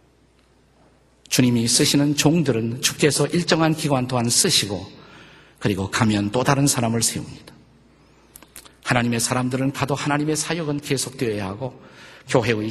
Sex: male